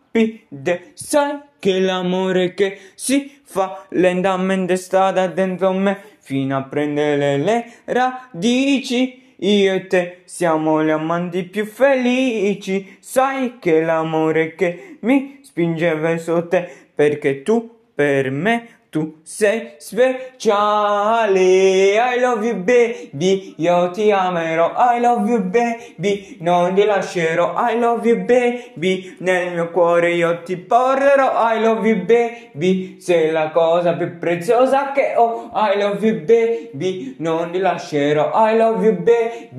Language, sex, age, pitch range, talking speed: Italian, male, 20-39, 175-235 Hz, 125 wpm